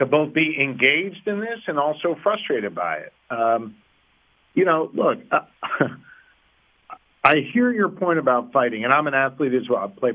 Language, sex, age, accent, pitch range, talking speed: English, male, 50-69, American, 120-150 Hz, 175 wpm